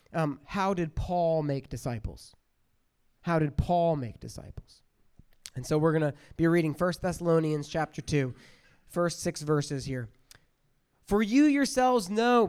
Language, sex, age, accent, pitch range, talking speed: English, male, 30-49, American, 155-210 Hz, 145 wpm